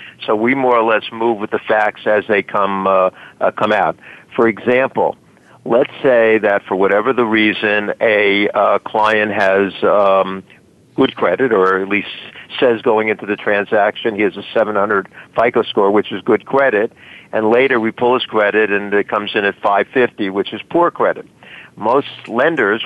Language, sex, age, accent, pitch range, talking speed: English, male, 50-69, American, 105-120 Hz, 180 wpm